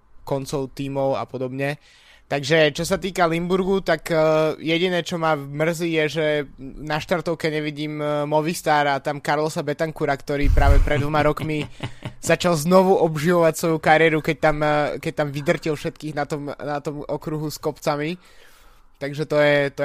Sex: male